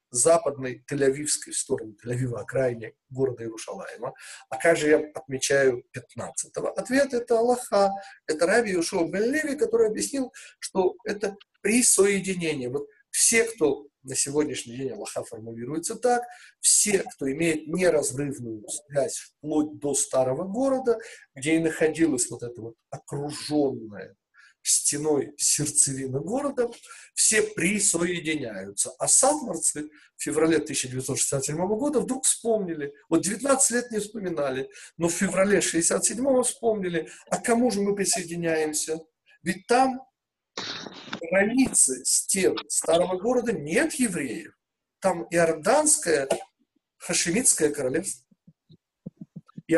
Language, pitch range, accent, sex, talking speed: Russian, 140-225 Hz, native, male, 110 wpm